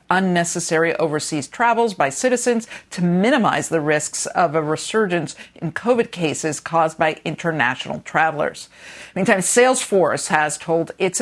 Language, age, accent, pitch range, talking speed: English, 50-69, American, 150-205 Hz, 130 wpm